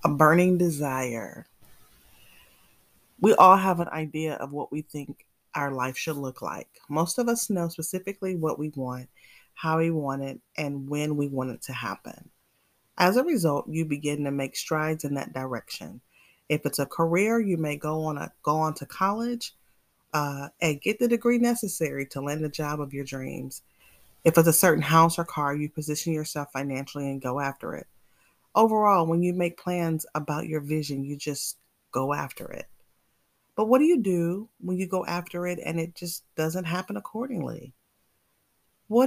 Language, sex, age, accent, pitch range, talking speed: English, female, 30-49, American, 145-185 Hz, 180 wpm